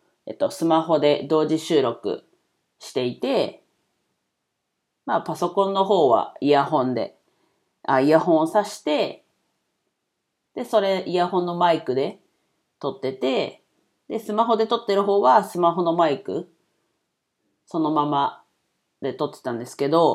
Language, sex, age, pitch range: Japanese, female, 40-59, 140-205 Hz